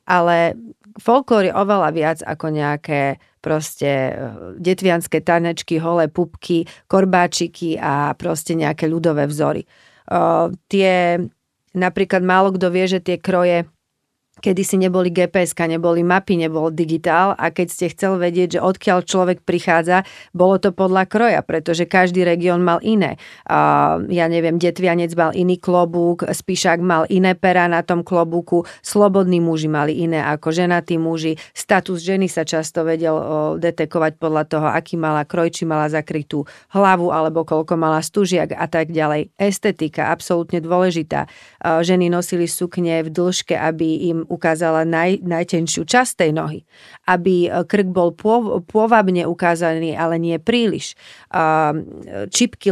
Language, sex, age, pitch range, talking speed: Czech, female, 40-59, 165-185 Hz, 130 wpm